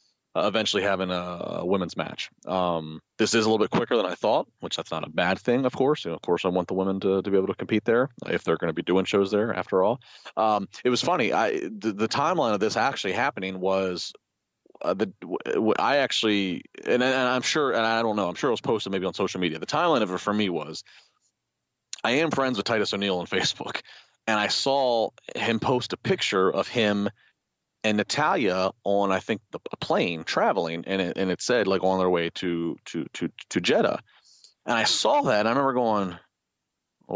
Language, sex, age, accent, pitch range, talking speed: English, male, 30-49, American, 95-115 Hz, 220 wpm